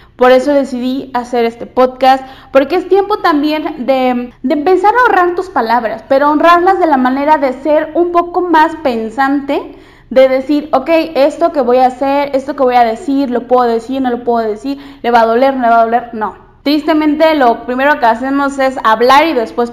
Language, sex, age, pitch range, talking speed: Spanish, female, 20-39, 245-320 Hz, 205 wpm